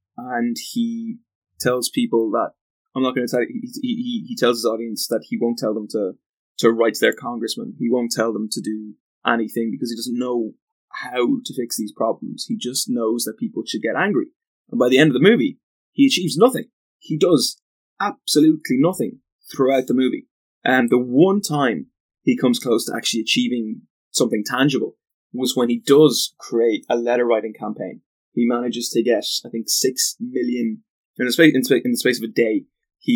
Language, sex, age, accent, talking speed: English, male, 20-39, British, 195 wpm